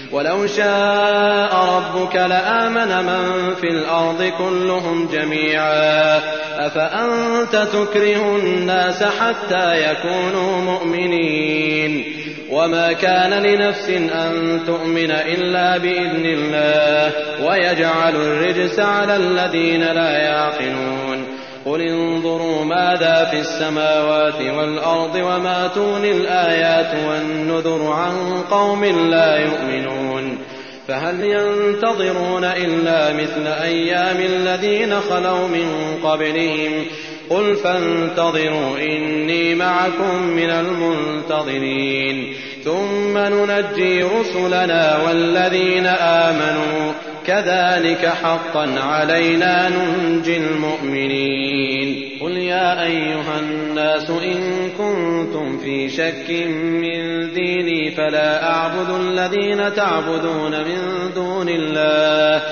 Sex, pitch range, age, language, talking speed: male, 155-185 Hz, 30-49, Arabic, 80 wpm